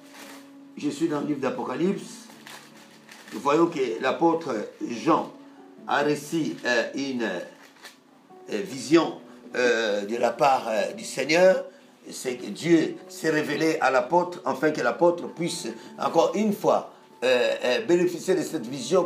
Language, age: French, 60-79